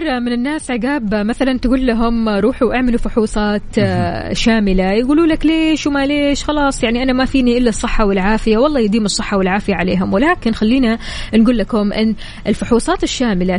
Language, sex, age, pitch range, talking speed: Arabic, female, 20-39, 210-255 Hz, 155 wpm